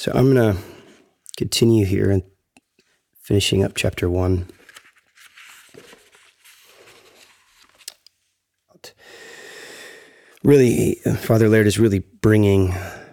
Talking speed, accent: 75 wpm, American